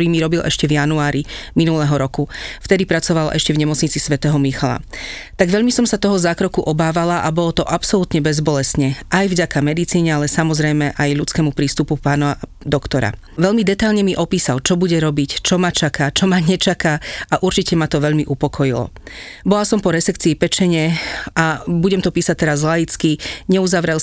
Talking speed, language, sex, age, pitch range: 170 wpm, Slovak, female, 40-59, 150-180 Hz